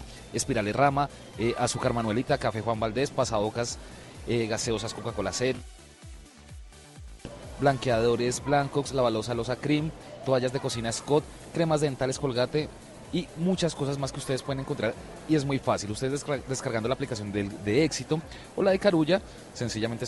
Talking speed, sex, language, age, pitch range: 145 wpm, male, Spanish, 30-49, 120-155 Hz